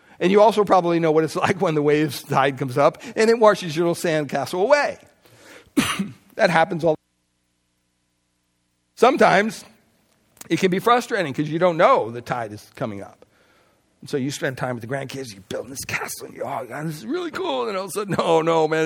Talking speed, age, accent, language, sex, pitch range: 220 wpm, 60-79, American, English, male, 145-225 Hz